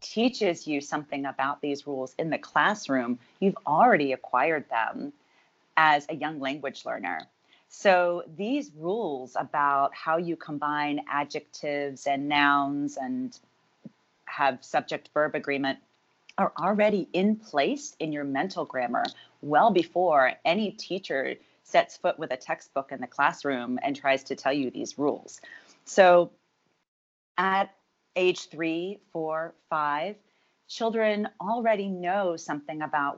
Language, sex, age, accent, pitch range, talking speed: English, female, 30-49, American, 140-180 Hz, 130 wpm